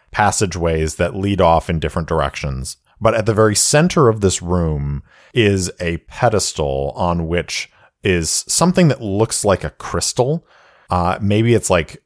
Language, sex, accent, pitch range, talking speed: English, male, American, 80-105 Hz, 155 wpm